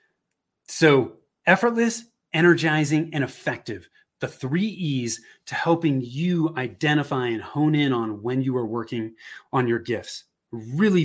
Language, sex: English, male